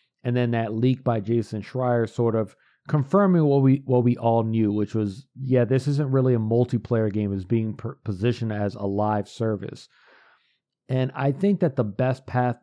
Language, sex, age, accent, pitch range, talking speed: English, male, 40-59, American, 105-125 Hz, 190 wpm